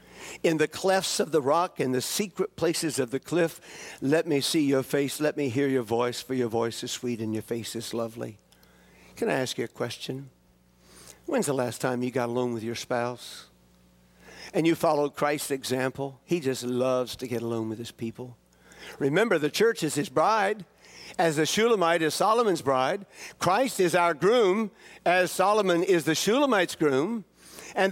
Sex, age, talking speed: male, 60-79, 185 wpm